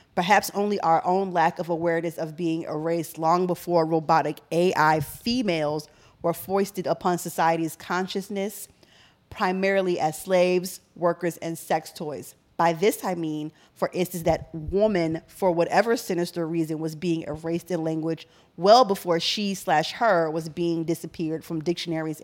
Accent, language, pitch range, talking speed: American, English, 165-195 Hz, 145 wpm